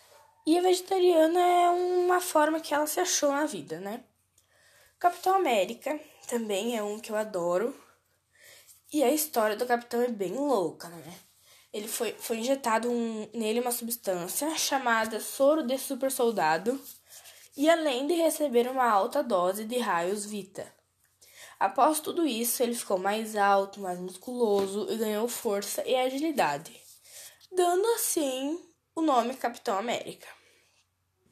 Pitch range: 225-300 Hz